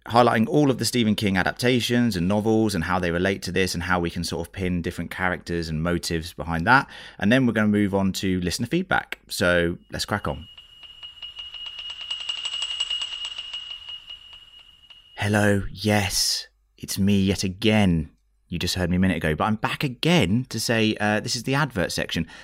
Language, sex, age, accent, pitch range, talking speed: English, male, 30-49, British, 85-110 Hz, 180 wpm